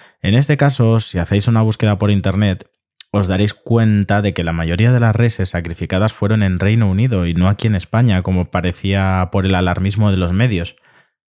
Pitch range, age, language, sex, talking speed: 90-110 Hz, 20-39, Spanish, male, 195 wpm